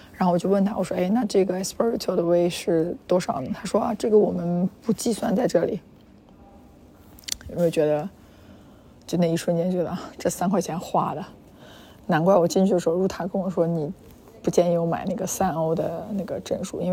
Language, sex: Chinese, female